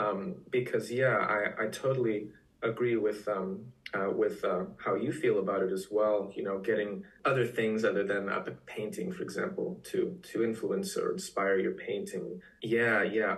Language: English